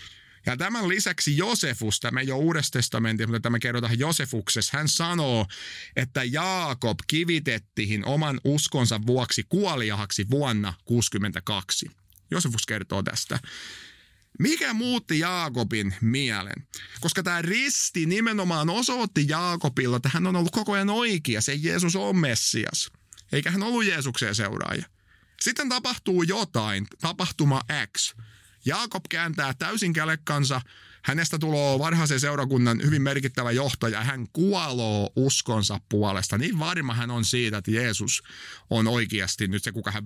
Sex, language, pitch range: male, Finnish, 110-165 Hz